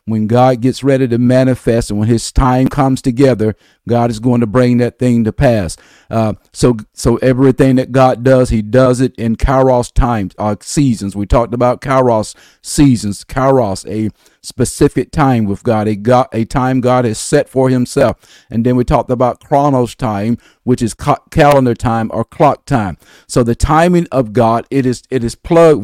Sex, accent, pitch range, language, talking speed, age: male, American, 115-140 Hz, English, 185 wpm, 50-69